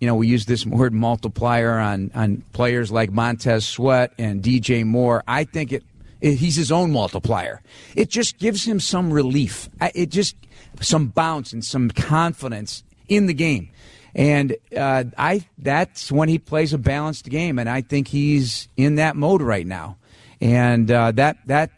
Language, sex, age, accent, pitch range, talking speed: English, male, 40-59, American, 115-145 Hz, 165 wpm